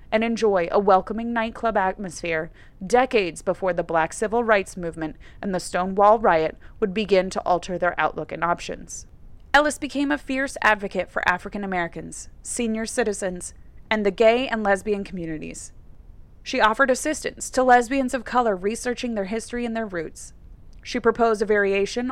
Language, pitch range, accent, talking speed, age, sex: English, 180-240 Hz, American, 155 wpm, 30-49, female